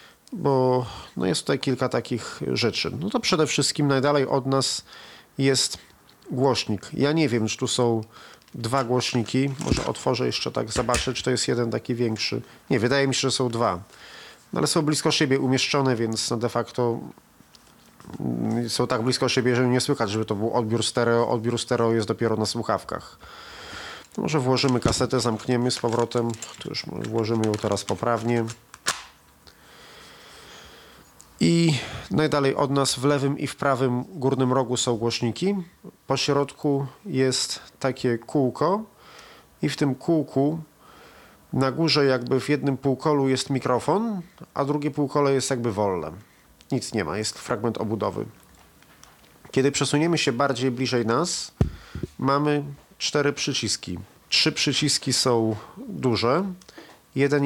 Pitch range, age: 115-145 Hz, 40-59